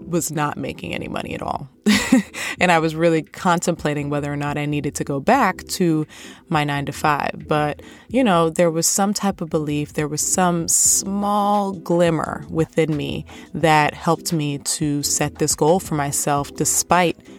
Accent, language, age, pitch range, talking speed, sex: American, English, 20-39, 145-180 Hz, 175 wpm, female